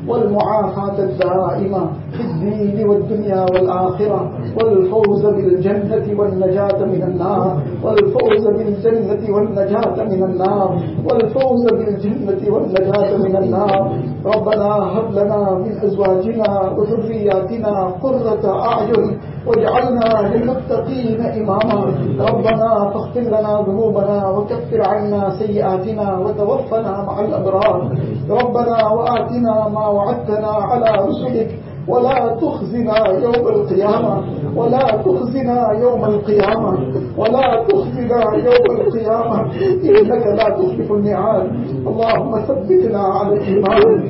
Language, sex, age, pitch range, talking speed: English, male, 50-69, 195-230 Hz, 95 wpm